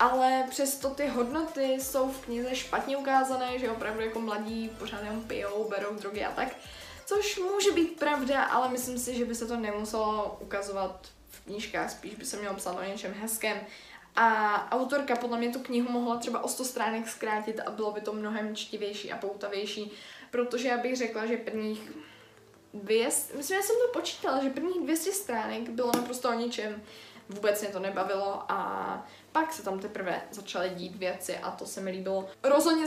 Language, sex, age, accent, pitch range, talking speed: Czech, female, 10-29, native, 205-245 Hz, 185 wpm